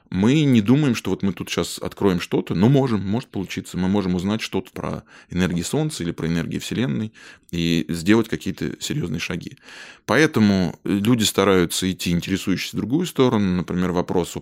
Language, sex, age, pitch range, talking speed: Russian, male, 20-39, 85-110 Hz, 170 wpm